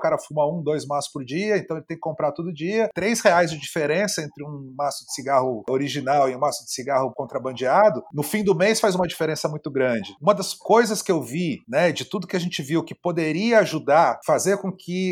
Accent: Brazilian